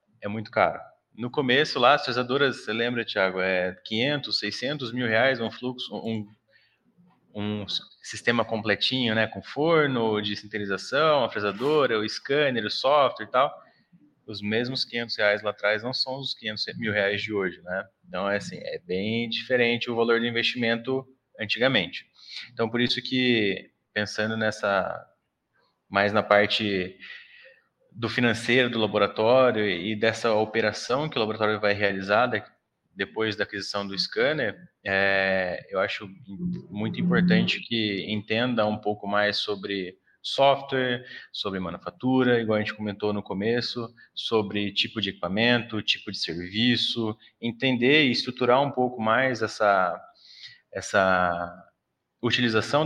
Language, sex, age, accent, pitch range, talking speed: Portuguese, male, 20-39, Brazilian, 105-125 Hz, 140 wpm